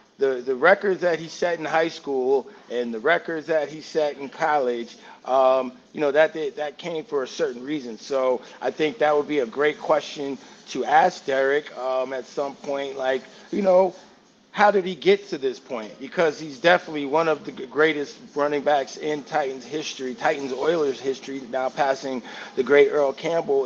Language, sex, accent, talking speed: English, male, American, 190 wpm